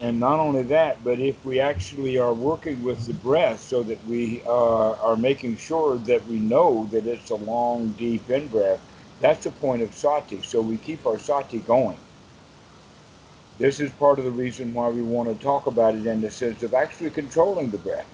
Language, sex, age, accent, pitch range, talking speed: English, male, 60-79, American, 110-140 Hz, 200 wpm